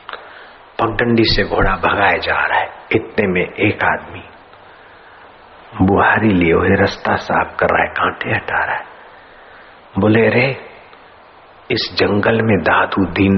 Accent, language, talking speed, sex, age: native, Hindi, 130 wpm, male, 50-69